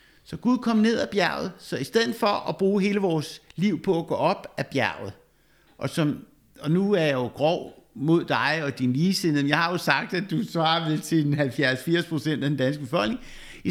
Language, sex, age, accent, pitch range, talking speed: Danish, male, 60-79, native, 135-185 Hz, 215 wpm